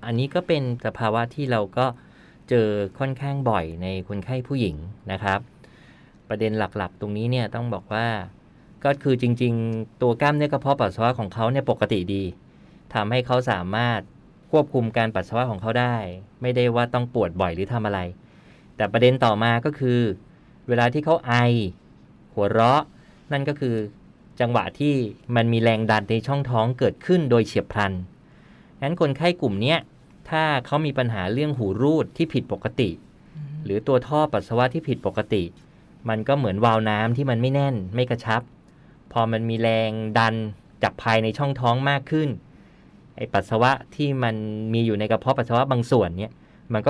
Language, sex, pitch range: Thai, male, 105-135 Hz